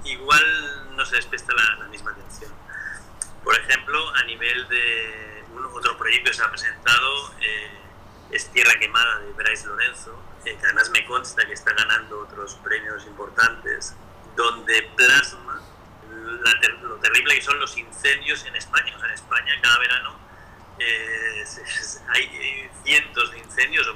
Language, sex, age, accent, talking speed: Spanish, male, 30-49, Spanish, 145 wpm